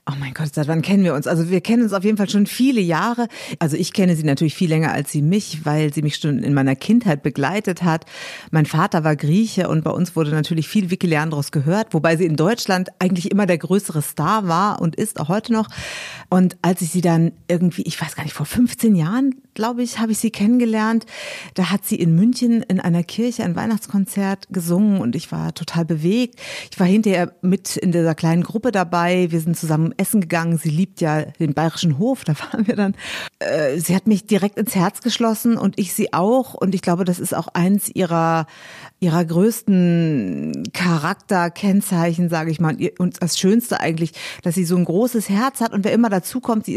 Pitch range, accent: 165-215 Hz, German